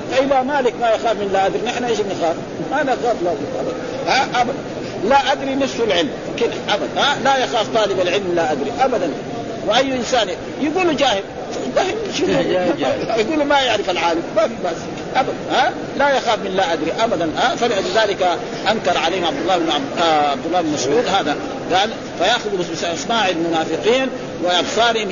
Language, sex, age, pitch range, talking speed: Arabic, male, 50-69, 185-255 Hz, 140 wpm